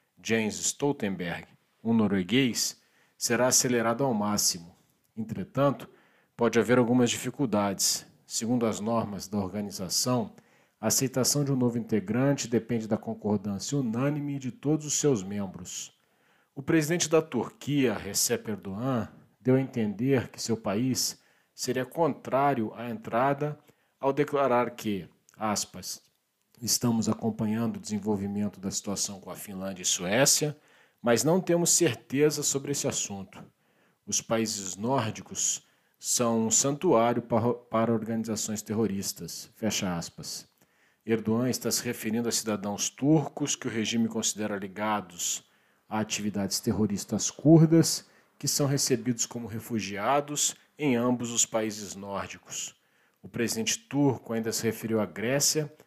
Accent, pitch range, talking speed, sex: Brazilian, 110-135 Hz, 120 wpm, male